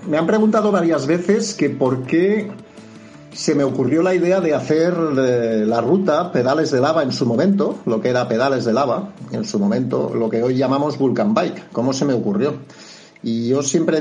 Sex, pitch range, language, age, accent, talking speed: male, 125-175 Hz, Spanish, 50-69, Spanish, 195 wpm